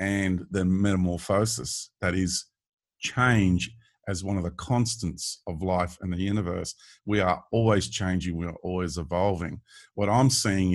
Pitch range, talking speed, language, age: 90-105 Hz, 150 wpm, English, 50-69